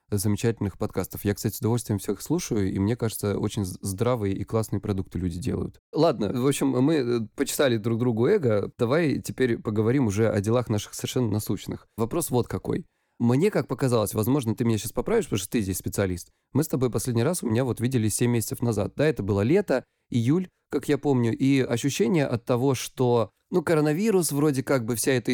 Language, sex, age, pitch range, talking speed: Russian, male, 20-39, 105-140 Hz, 195 wpm